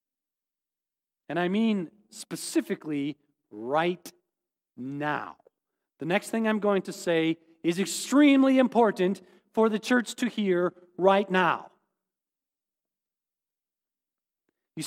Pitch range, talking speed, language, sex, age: 175-255 Hz, 95 wpm, English, male, 40-59